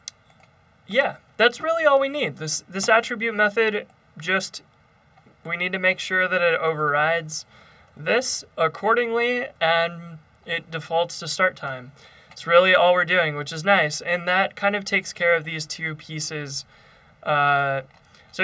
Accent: American